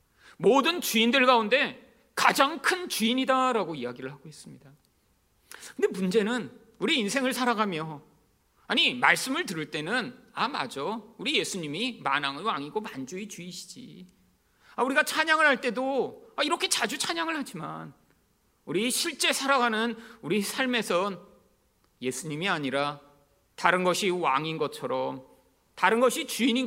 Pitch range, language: 170-245 Hz, Korean